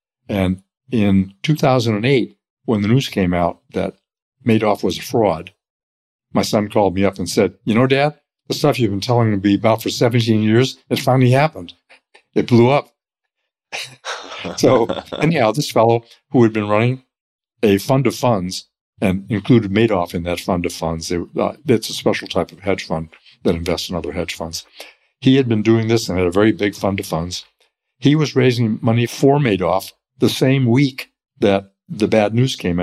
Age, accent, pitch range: 60-79, American, 95-125 Hz